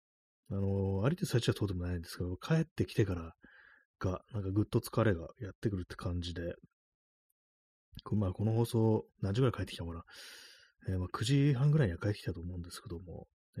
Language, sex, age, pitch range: Japanese, male, 30-49, 90-120 Hz